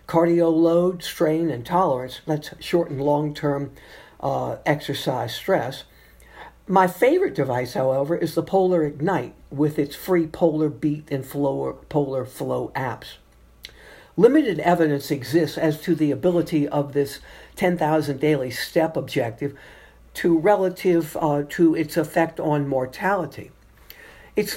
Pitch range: 145-175 Hz